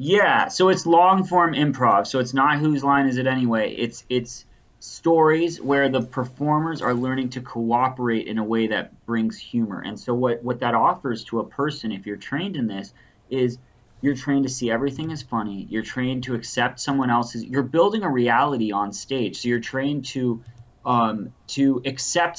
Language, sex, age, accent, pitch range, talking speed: English, male, 30-49, American, 115-135 Hz, 190 wpm